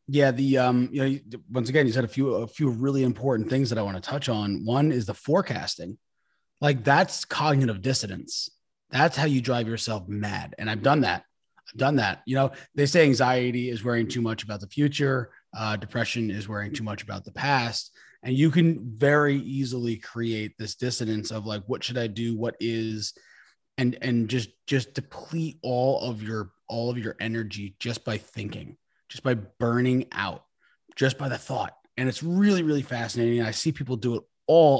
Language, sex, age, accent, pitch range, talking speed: English, male, 30-49, American, 115-145 Hz, 195 wpm